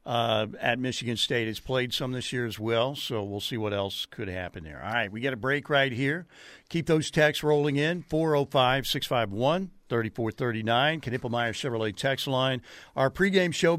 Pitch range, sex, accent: 125-170 Hz, male, American